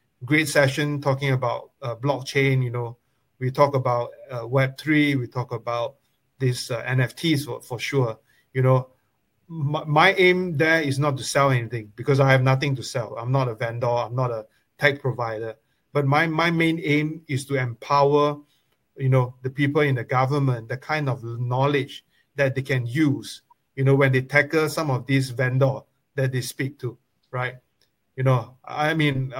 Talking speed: 180 wpm